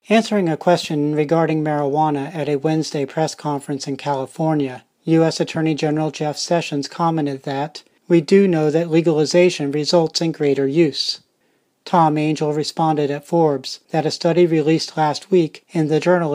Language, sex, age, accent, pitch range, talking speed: English, male, 40-59, American, 145-170 Hz, 155 wpm